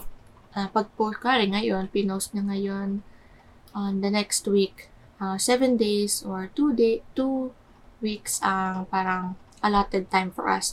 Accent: native